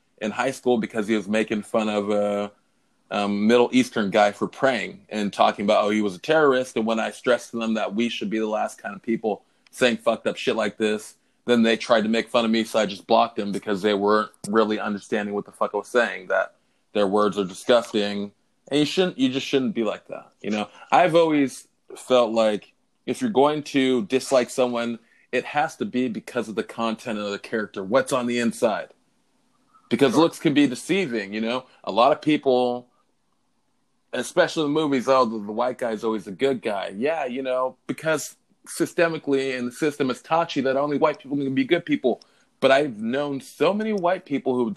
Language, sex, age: English, male, 20-39